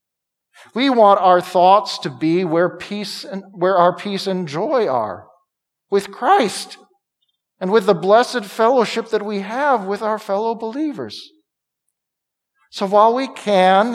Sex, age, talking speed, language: male, 50-69, 140 wpm, English